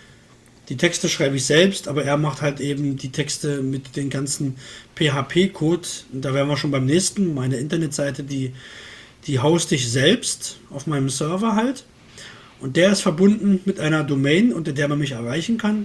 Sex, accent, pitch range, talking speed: male, German, 135-175 Hz, 180 wpm